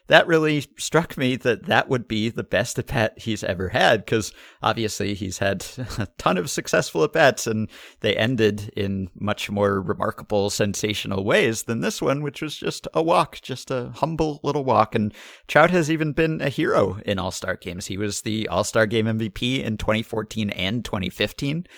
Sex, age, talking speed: male, 50-69, 180 wpm